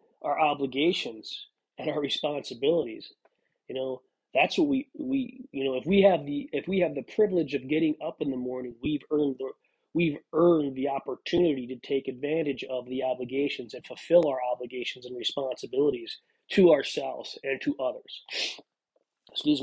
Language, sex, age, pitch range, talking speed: English, male, 30-49, 135-175 Hz, 160 wpm